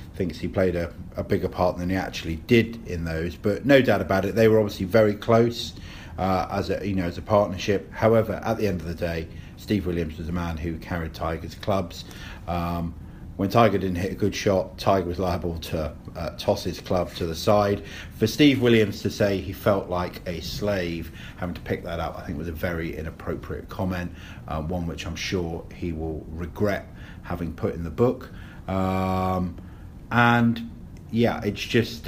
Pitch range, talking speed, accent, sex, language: 90-105 Hz, 200 wpm, British, male, English